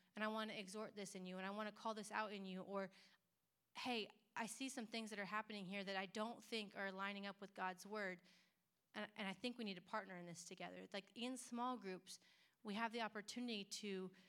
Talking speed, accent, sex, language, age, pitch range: 240 wpm, American, female, English, 30-49, 185-215 Hz